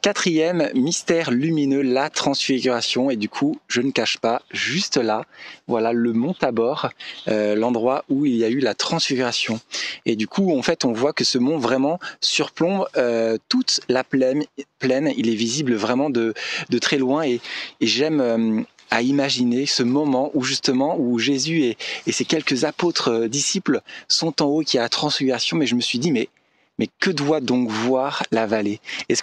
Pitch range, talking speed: 120-155 Hz, 190 wpm